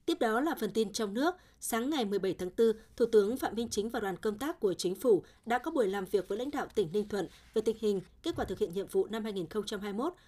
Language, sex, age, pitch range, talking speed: Vietnamese, female, 20-39, 200-255 Hz, 270 wpm